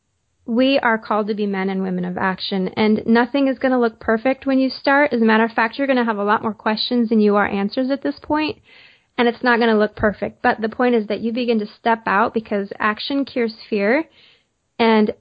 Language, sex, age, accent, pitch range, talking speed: English, female, 20-39, American, 210-245 Hz, 245 wpm